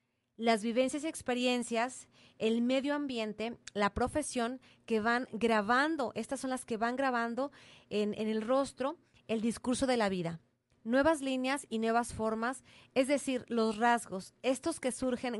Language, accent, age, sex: Spanish, Mexican, 30-49, female